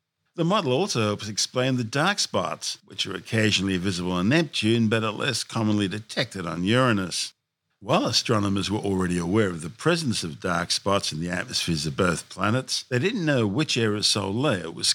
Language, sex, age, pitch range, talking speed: English, male, 50-69, 100-135 Hz, 180 wpm